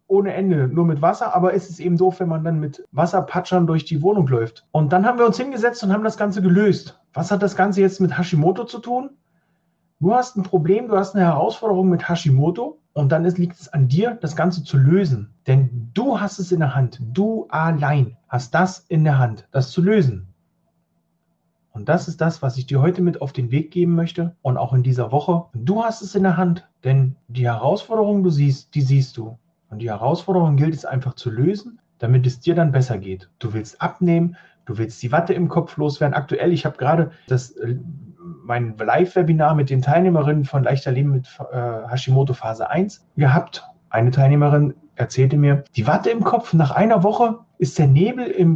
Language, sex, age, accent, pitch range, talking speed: German, male, 40-59, German, 135-185 Hz, 210 wpm